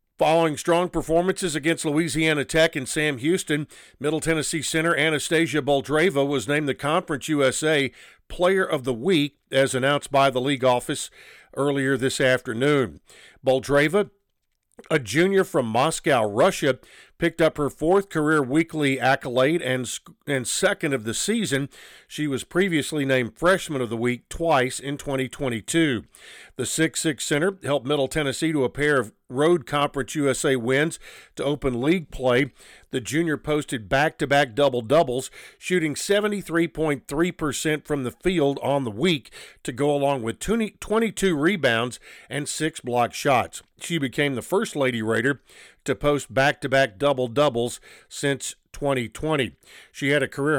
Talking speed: 145 wpm